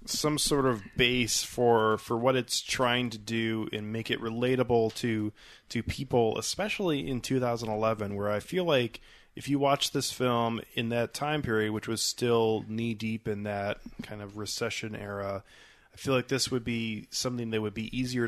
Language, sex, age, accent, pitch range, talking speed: English, male, 20-39, American, 110-130 Hz, 195 wpm